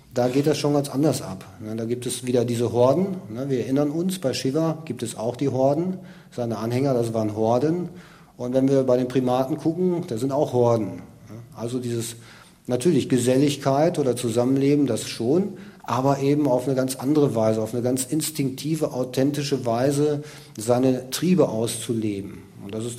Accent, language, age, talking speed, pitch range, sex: German, German, 40-59, 170 wpm, 120-155 Hz, male